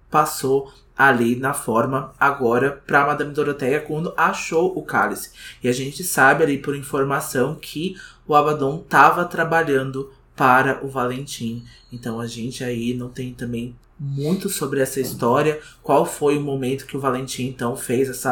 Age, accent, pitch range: 20-39, Brazilian, 125-145 Hz